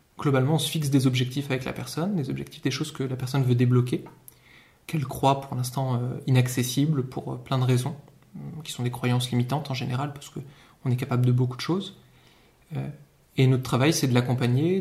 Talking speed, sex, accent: 200 wpm, male, French